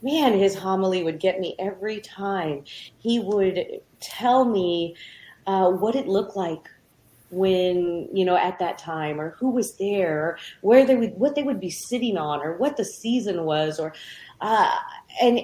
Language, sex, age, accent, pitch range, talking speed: English, female, 30-49, American, 175-230 Hz, 170 wpm